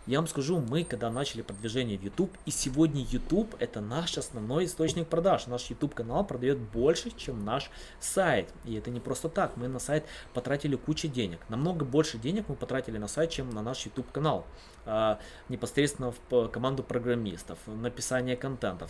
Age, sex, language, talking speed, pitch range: 20-39, male, Russian, 180 wpm, 110-145 Hz